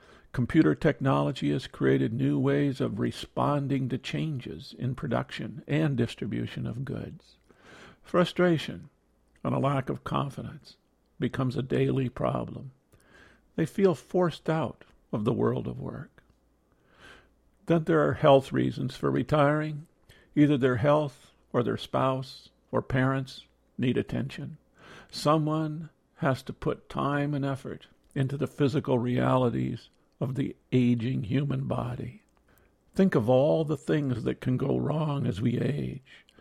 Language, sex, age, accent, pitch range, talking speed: English, male, 50-69, American, 115-150 Hz, 130 wpm